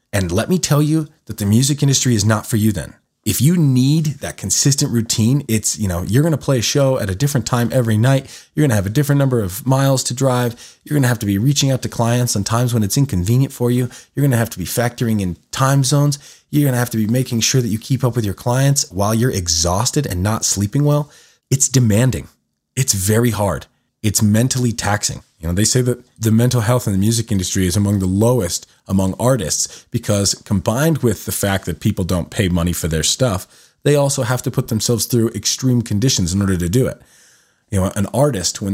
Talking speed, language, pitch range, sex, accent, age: 235 wpm, English, 100-130 Hz, male, American, 20-39